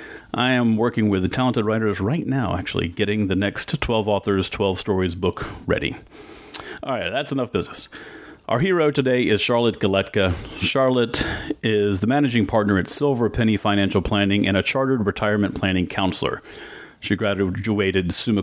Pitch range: 100-125 Hz